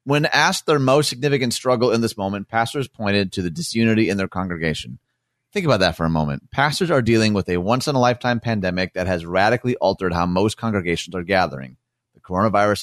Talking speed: 195 wpm